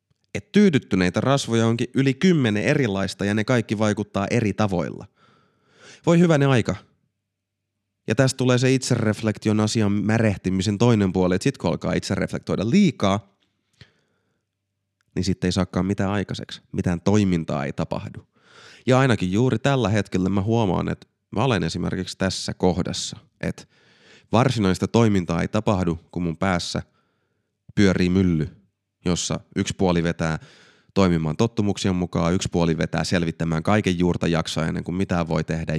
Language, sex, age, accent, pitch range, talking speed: Finnish, male, 30-49, native, 90-110 Hz, 140 wpm